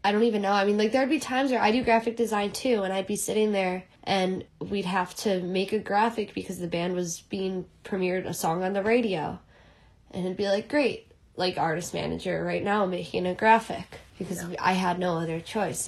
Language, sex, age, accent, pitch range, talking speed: English, female, 10-29, American, 165-195 Hz, 220 wpm